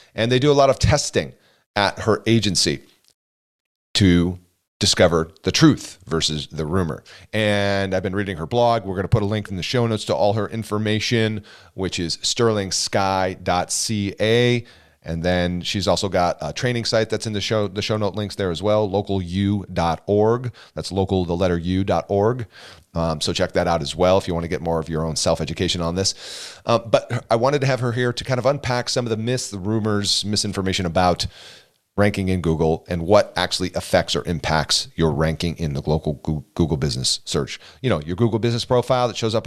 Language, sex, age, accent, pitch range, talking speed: English, male, 40-59, American, 85-110 Hz, 195 wpm